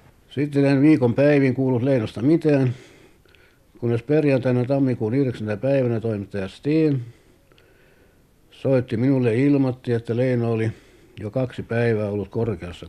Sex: male